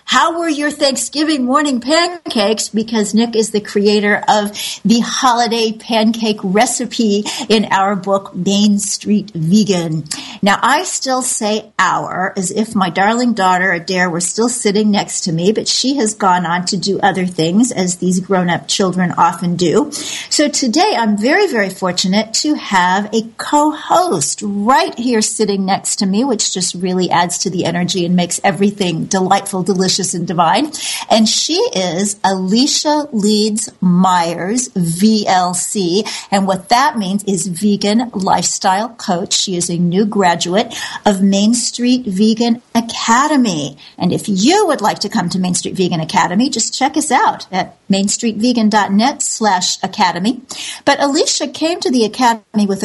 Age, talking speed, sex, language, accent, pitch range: 40-59, 155 wpm, female, English, American, 185-235 Hz